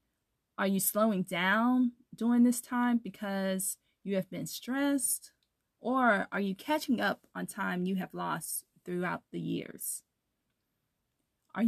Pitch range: 185-250 Hz